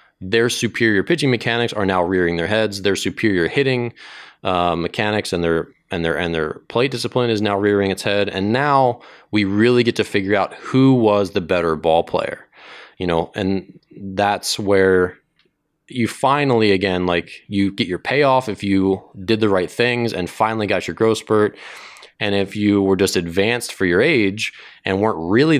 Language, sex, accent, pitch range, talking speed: English, male, American, 95-115 Hz, 180 wpm